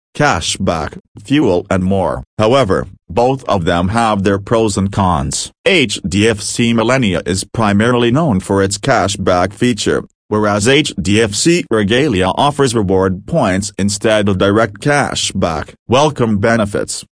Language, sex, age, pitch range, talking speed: English, male, 40-59, 95-120 Hz, 120 wpm